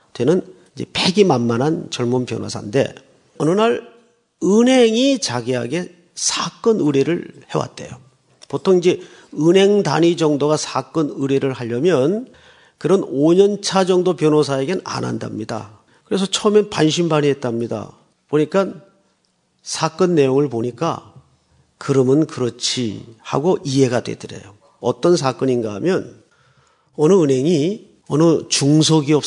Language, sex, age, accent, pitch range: Korean, male, 40-59, native, 135-195 Hz